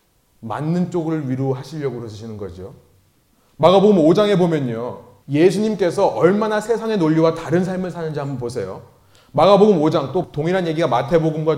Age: 30-49